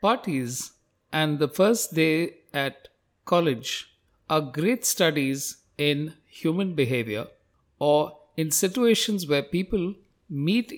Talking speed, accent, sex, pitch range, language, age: 105 wpm, Indian, male, 130-180 Hz, English, 50-69